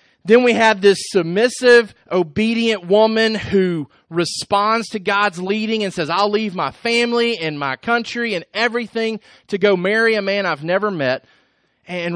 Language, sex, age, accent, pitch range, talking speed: English, male, 30-49, American, 185-235 Hz, 160 wpm